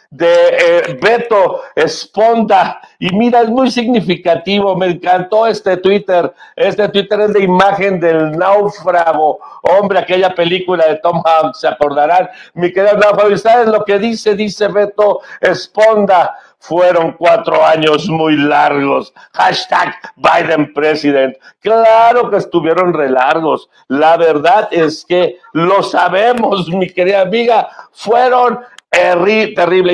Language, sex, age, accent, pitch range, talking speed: English, male, 60-79, Mexican, 155-205 Hz, 120 wpm